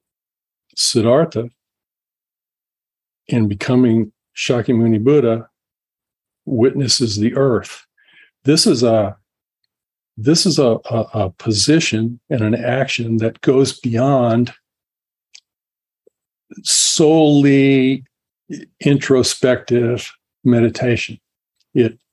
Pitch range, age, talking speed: 110-130 Hz, 50-69, 75 wpm